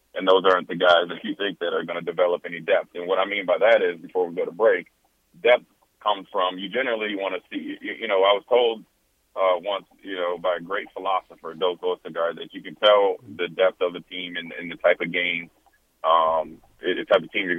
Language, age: English, 30-49